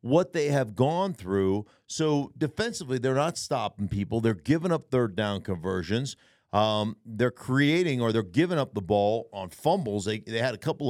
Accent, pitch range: American, 105-140 Hz